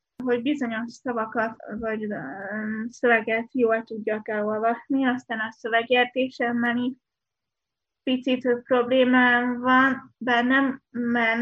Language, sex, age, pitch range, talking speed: Hungarian, female, 20-39, 225-245 Hz, 90 wpm